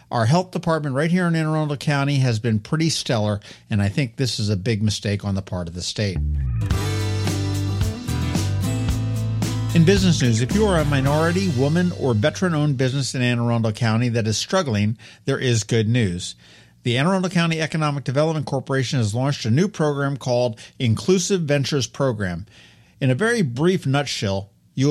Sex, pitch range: male, 115-150 Hz